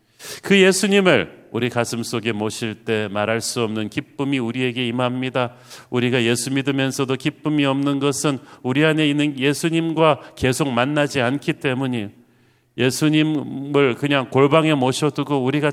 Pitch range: 120-145 Hz